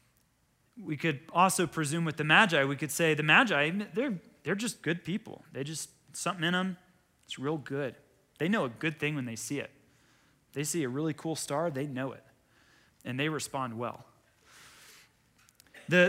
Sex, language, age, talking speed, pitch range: male, English, 30-49, 180 wpm, 130-165 Hz